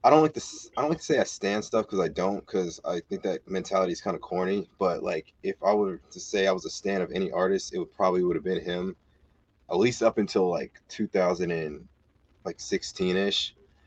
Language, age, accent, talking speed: English, 20-39, American, 220 wpm